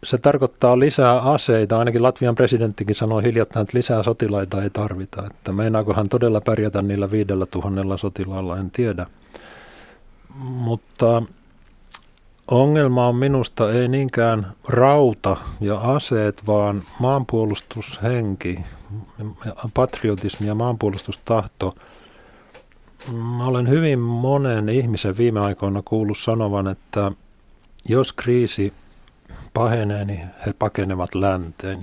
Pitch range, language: 100-125 Hz, Finnish